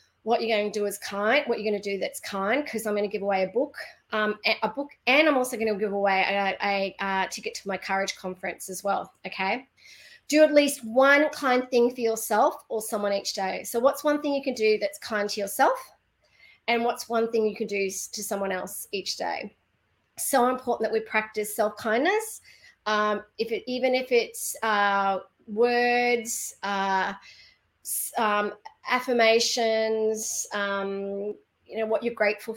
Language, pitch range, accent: English, 205-250 Hz, Australian